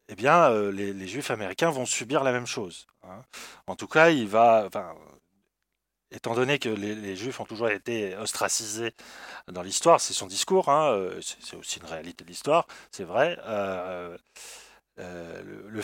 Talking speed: 165 wpm